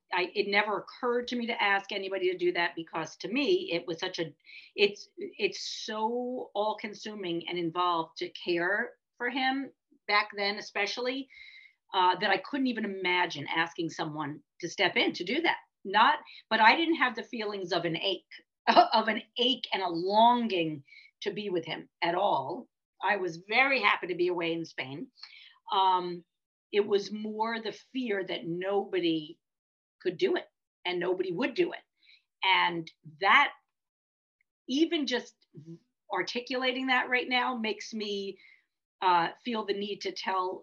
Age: 50-69